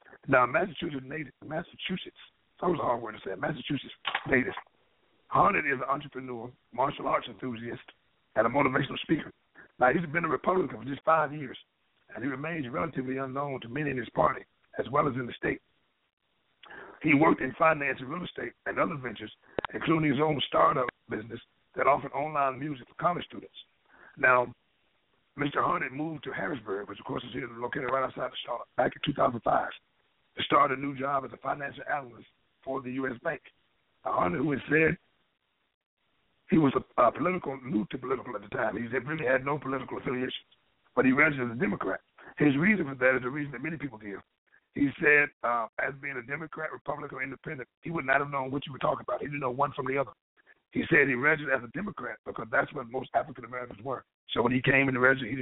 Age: 60-79